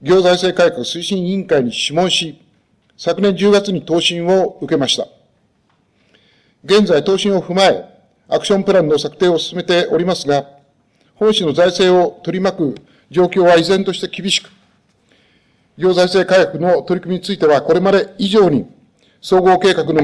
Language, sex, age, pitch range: Japanese, male, 50-69, 170-195 Hz